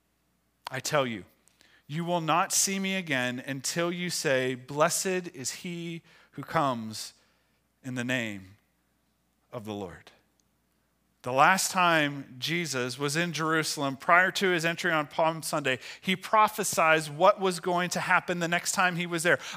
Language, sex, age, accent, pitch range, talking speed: English, male, 40-59, American, 150-210 Hz, 155 wpm